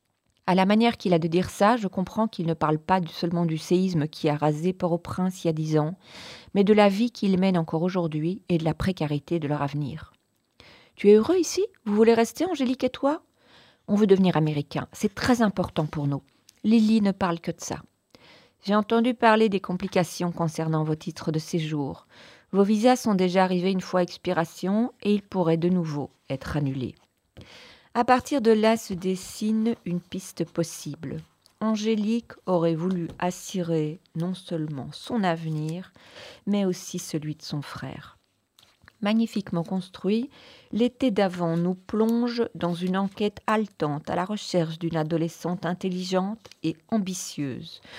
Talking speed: 170 wpm